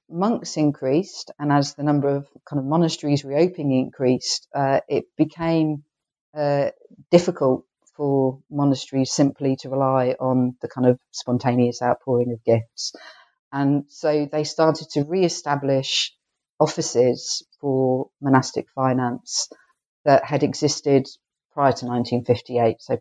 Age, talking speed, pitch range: 50-69, 120 wpm, 135-155 Hz